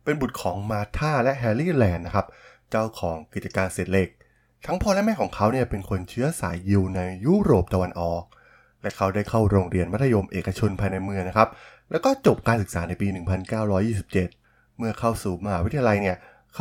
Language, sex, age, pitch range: Thai, male, 20-39, 95-120 Hz